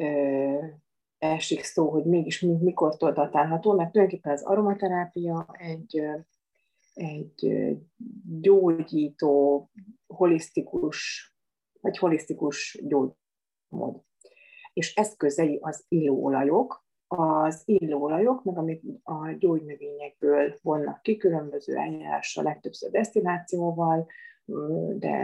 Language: English